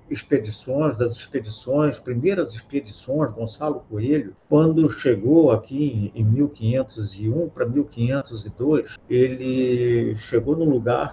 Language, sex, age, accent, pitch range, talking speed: Portuguese, male, 50-69, Brazilian, 115-160 Hz, 95 wpm